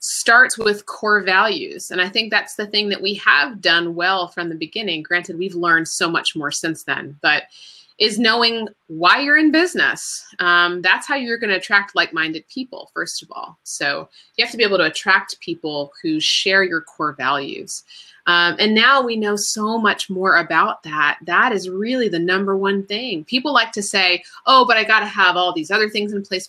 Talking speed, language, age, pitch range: 210 wpm, English, 30-49, 170-220 Hz